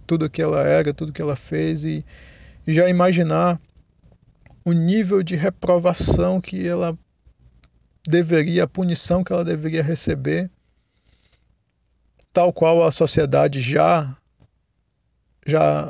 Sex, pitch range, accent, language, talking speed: male, 135-165 Hz, Brazilian, Portuguese, 115 wpm